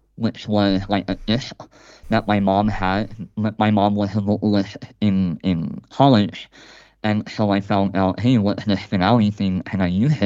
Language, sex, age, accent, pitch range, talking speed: English, male, 20-39, American, 95-115 Hz, 175 wpm